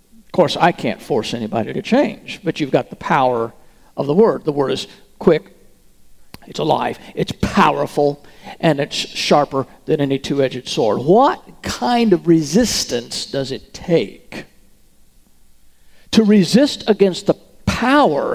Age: 50-69